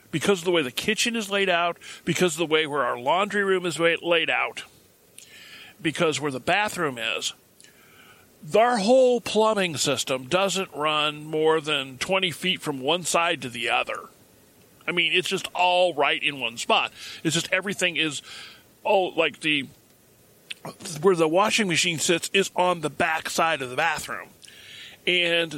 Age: 40-59